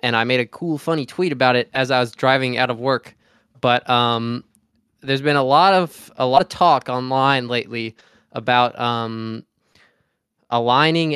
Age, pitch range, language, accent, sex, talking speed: 20-39, 120-145 Hz, English, American, male, 170 wpm